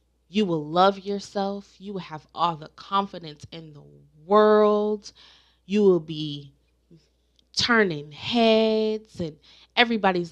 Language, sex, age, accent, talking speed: English, female, 20-39, American, 115 wpm